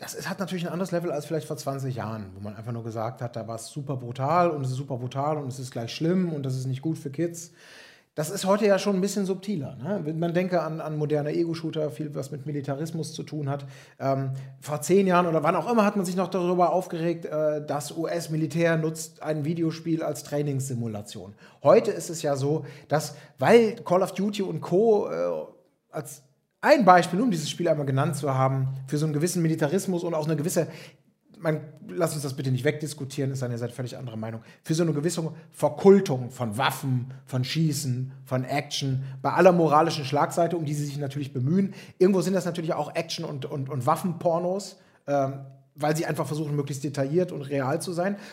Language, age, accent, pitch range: German, 30-49, German, 140-175 Hz